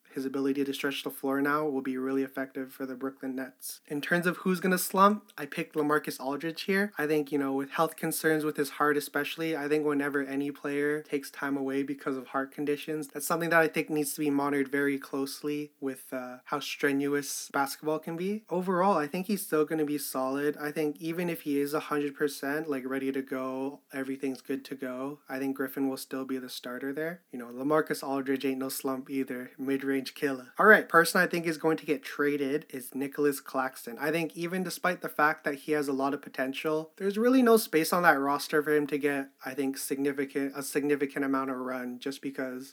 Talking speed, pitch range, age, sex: 220 wpm, 135-155 Hz, 20-39, male